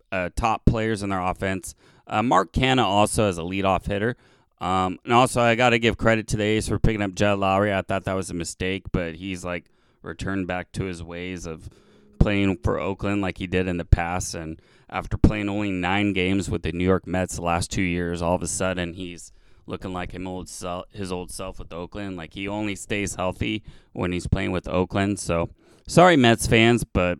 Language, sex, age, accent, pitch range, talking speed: English, male, 20-39, American, 95-115 Hz, 220 wpm